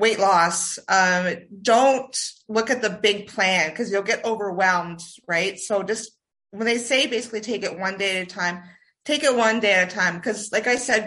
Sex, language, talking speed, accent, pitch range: female, English, 205 wpm, American, 190-235 Hz